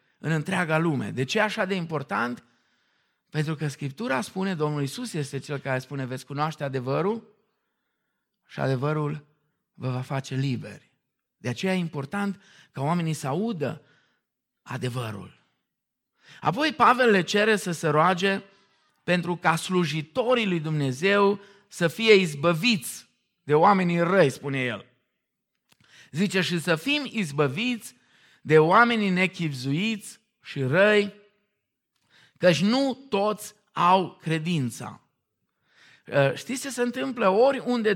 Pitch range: 145-205 Hz